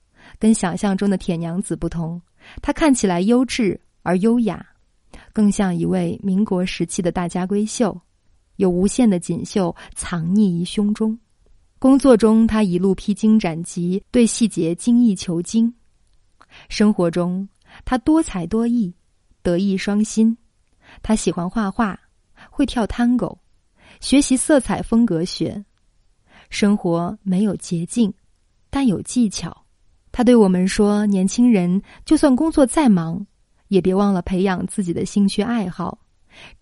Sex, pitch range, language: female, 185-230 Hz, Chinese